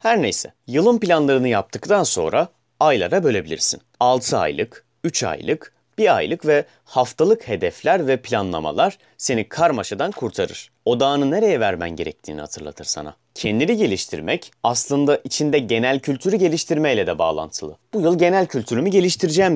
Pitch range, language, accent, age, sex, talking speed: 115-165 Hz, Turkish, native, 30-49, male, 130 wpm